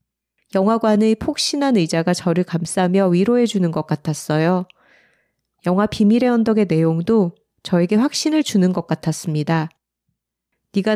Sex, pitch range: female, 165-225 Hz